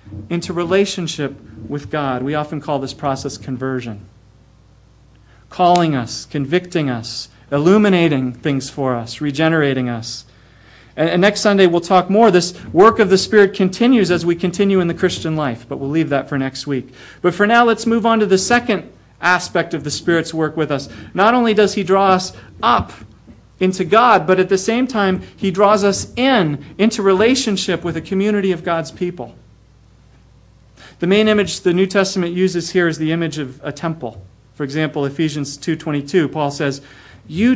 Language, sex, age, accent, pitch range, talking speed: English, male, 40-59, American, 135-195 Hz, 175 wpm